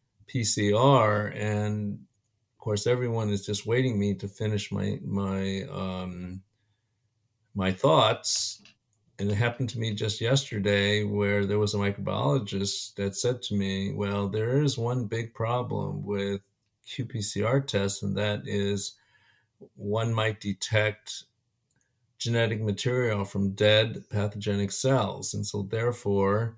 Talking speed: 125 wpm